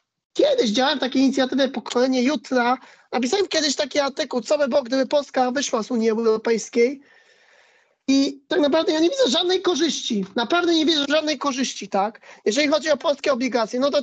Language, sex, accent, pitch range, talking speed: Polish, male, native, 240-285 Hz, 170 wpm